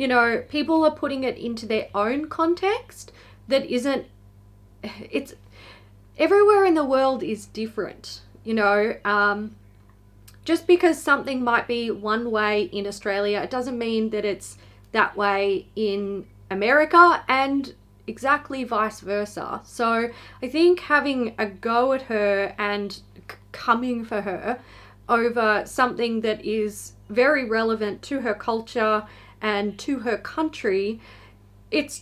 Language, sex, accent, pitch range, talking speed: English, female, Australian, 180-245 Hz, 130 wpm